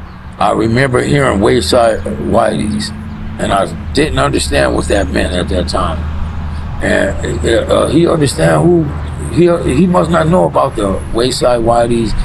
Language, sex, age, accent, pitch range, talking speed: English, male, 60-79, American, 80-95 Hz, 140 wpm